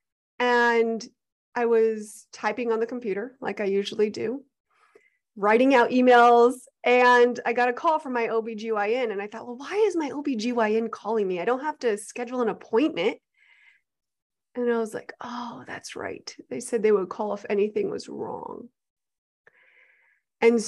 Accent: American